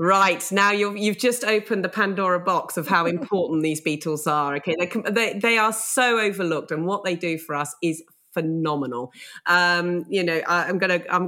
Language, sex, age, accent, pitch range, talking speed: English, female, 30-49, British, 150-195 Hz, 185 wpm